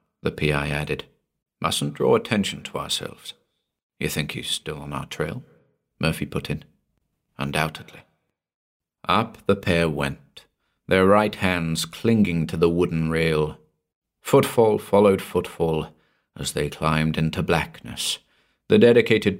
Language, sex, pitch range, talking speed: English, male, 80-110 Hz, 125 wpm